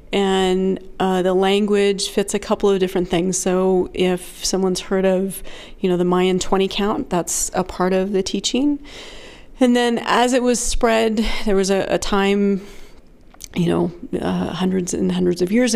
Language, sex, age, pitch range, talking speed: English, female, 40-59, 175-200 Hz, 175 wpm